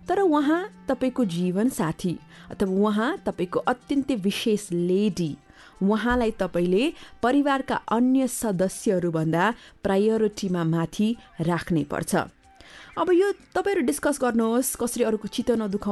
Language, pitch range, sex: English, 180-265 Hz, female